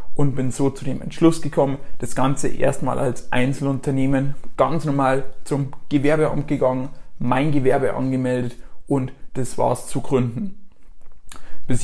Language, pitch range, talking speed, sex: German, 130-155 Hz, 130 wpm, male